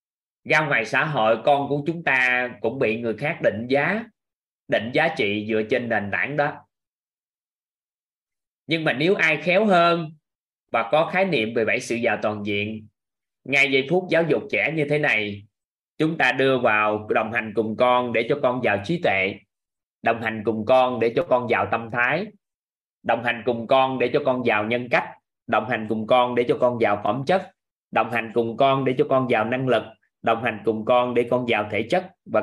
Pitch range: 110-150 Hz